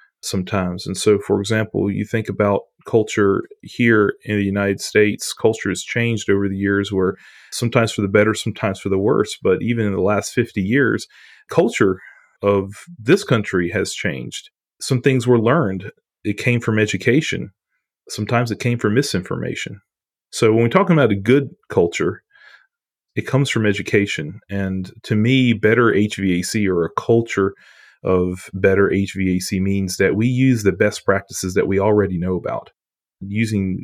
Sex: male